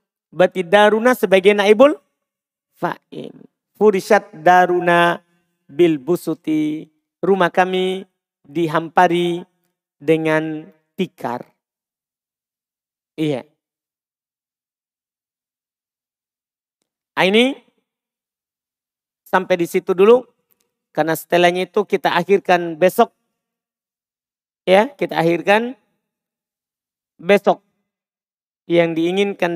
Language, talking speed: Indonesian, 65 wpm